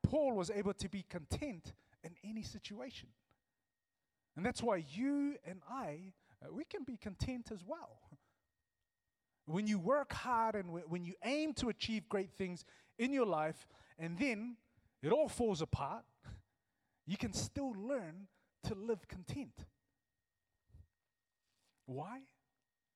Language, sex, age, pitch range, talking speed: English, male, 30-49, 145-225 Hz, 130 wpm